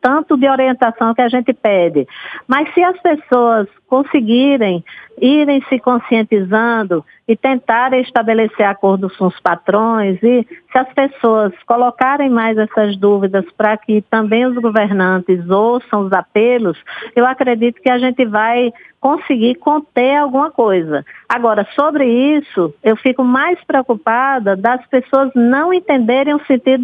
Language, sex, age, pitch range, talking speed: Portuguese, female, 50-69, 215-275 Hz, 135 wpm